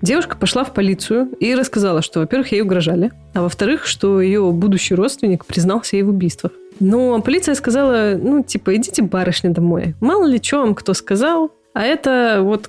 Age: 20-39